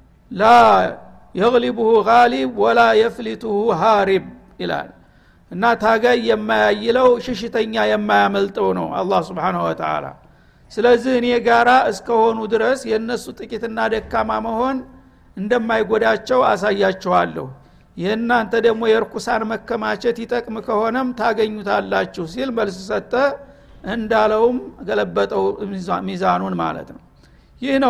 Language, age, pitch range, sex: Amharic, 60-79, 215-245 Hz, male